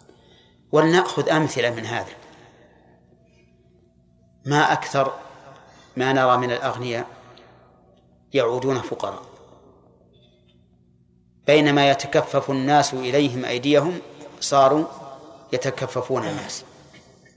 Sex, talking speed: male, 70 wpm